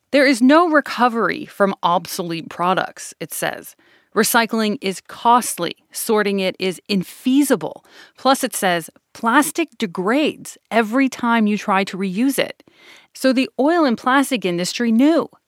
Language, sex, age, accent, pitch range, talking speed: English, female, 30-49, American, 190-265 Hz, 135 wpm